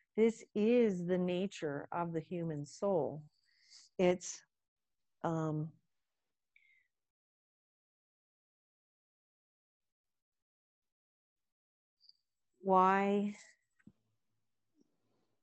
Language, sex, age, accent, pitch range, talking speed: English, female, 50-69, American, 155-200 Hz, 45 wpm